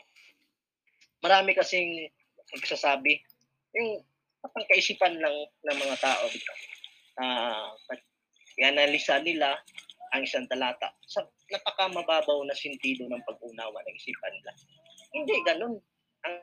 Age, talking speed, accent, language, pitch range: 20-39, 105 wpm, Filipino, English, 145-210 Hz